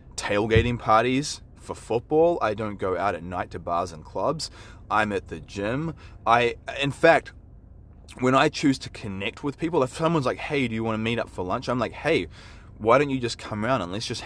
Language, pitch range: English, 100-130 Hz